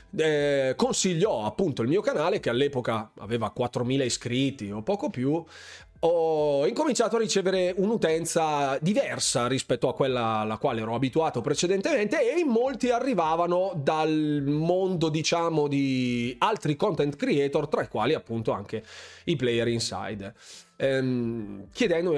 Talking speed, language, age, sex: 130 wpm, Italian, 30-49, male